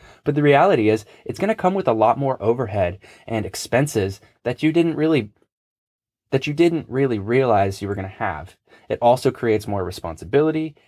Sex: male